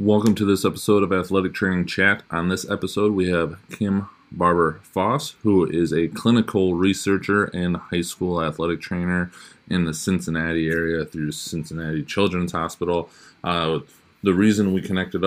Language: English